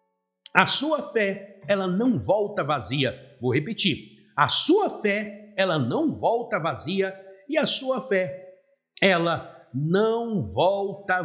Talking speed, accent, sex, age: 125 wpm, Brazilian, male, 50-69